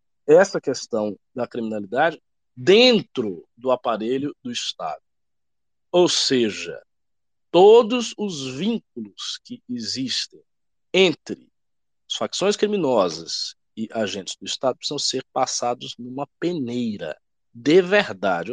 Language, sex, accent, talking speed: Portuguese, male, Brazilian, 100 wpm